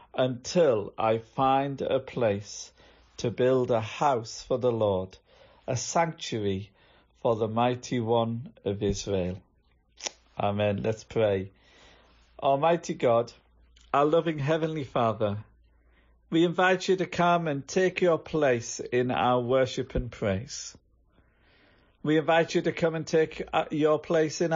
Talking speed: 130 wpm